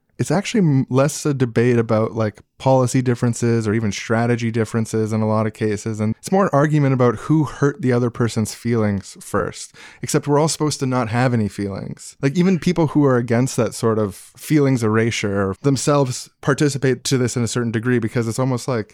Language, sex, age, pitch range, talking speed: English, male, 20-39, 105-130 Hz, 200 wpm